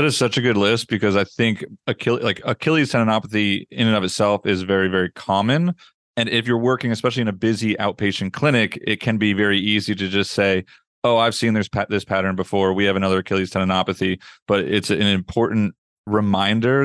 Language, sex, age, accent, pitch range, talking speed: English, male, 30-49, American, 100-115 Hz, 195 wpm